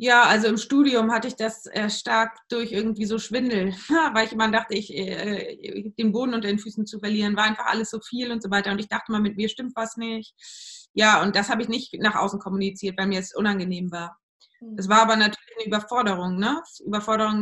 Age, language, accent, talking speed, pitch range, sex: 20-39, German, German, 225 wpm, 200-230 Hz, female